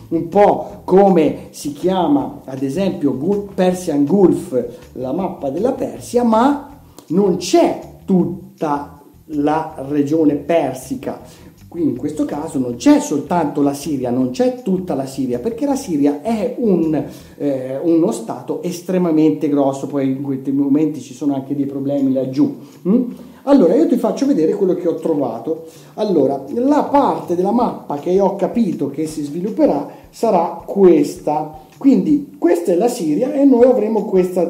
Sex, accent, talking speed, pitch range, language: male, native, 150 wpm, 140-205 Hz, Italian